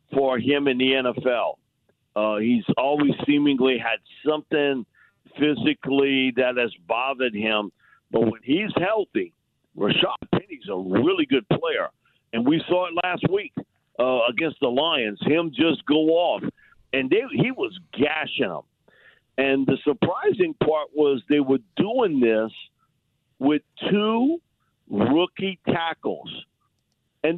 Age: 50-69